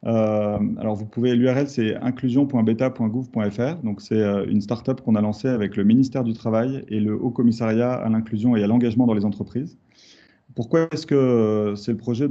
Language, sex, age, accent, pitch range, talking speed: French, male, 30-49, French, 105-125 Hz, 175 wpm